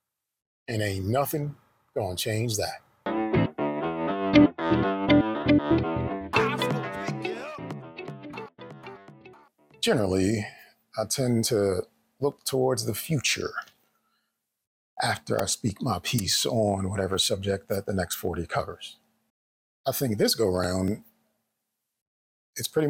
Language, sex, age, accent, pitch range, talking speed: English, male, 40-59, American, 95-115 Hz, 90 wpm